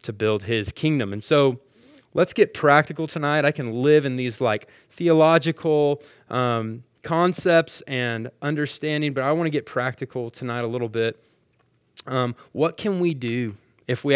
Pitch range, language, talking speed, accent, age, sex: 115-145 Hz, English, 160 wpm, American, 20-39, male